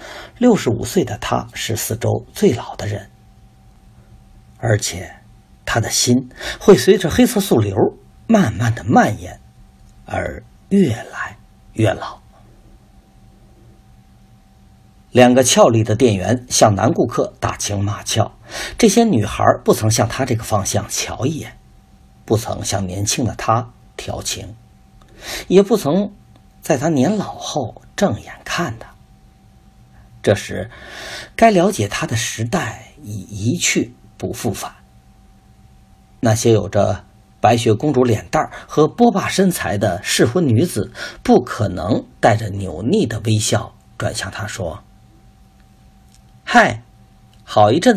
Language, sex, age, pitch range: Chinese, male, 50-69, 105-150 Hz